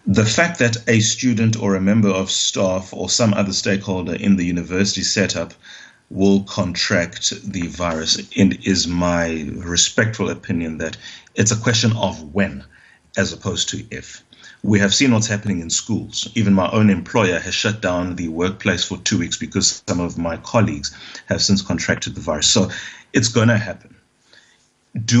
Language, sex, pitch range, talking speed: English, male, 95-115 Hz, 165 wpm